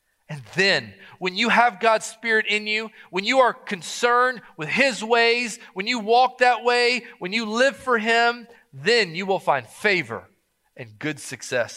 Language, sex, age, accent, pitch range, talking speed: English, male, 40-59, American, 175-250 Hz, 175 wpm